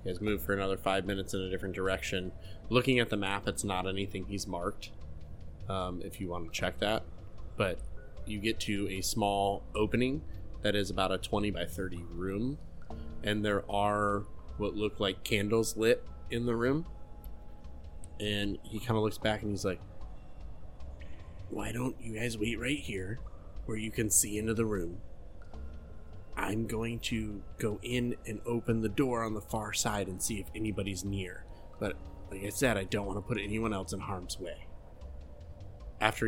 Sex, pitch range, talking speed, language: male, 90-110 Hz, 180 wpm, English